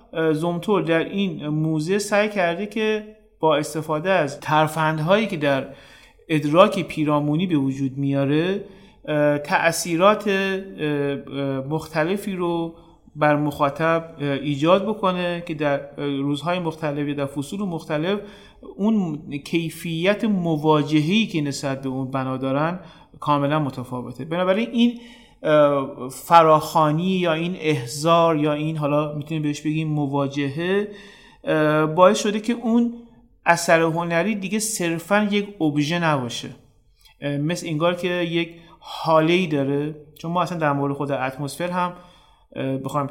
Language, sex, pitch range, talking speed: Persian, male, 145-180 Hz, 115 wpm